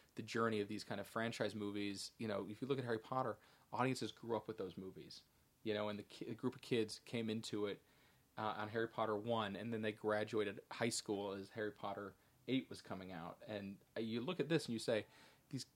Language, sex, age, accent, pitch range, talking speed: English, male, 30-49, American, 105-120 Hz, 230 wpm